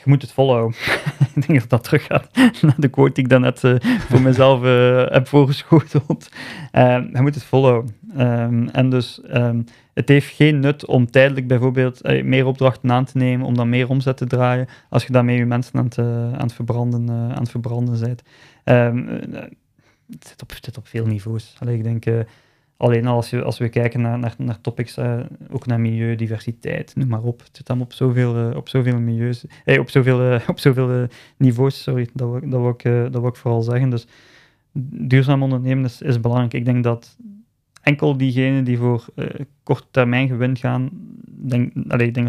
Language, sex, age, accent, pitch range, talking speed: Dutch, male, 20-39, Dutch, 120-135 Hz, 180 wpm